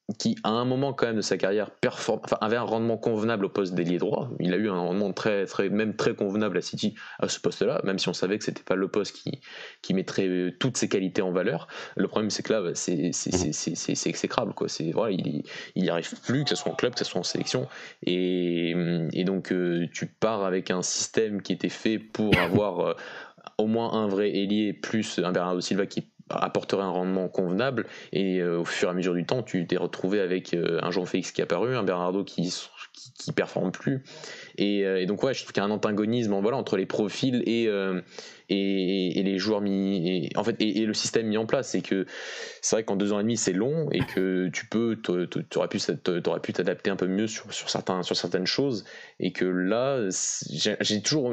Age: 20-39